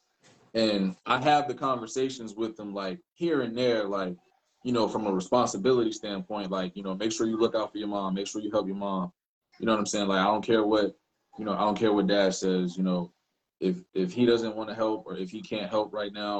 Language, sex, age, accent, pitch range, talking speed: English, male, 20-39, American, 95-115 Hz, 255 wpm